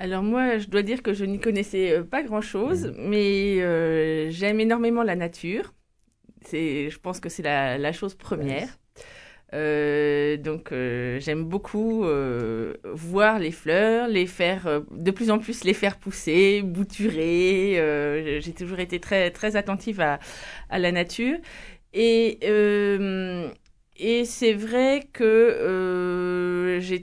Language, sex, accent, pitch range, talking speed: French, female, French, 165-215 Hz, 140 wpm